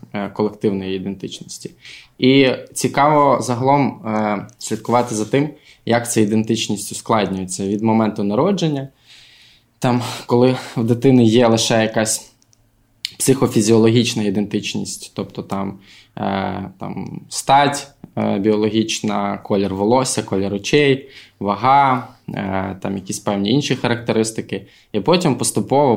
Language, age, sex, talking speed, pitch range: Ukrainian, 20-39, male, 95 wpm, 100-120 Hz